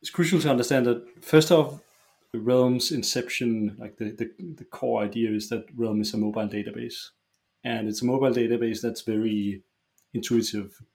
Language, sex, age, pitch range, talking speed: English, male, 30-49, 105-125 Hz, 165 wpm